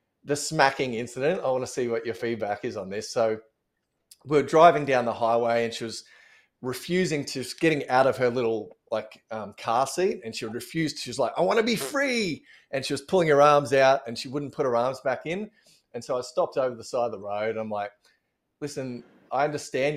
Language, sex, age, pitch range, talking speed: English, male, 30-49, 120-145 Hz, 230 wpm